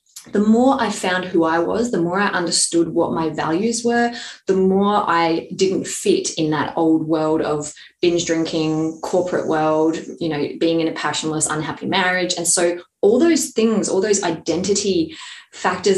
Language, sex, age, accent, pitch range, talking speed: English, female, 20-39, Australian, 165-200 Hz, 175 wpm